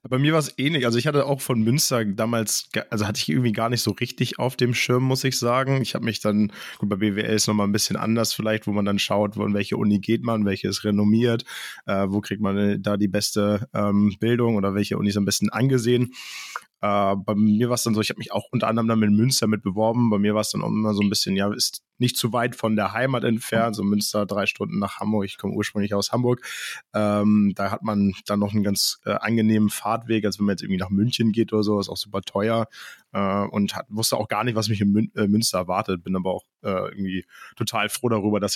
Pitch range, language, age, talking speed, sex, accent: 100-115 Hz, German, 20-39, 250 wpm, male, German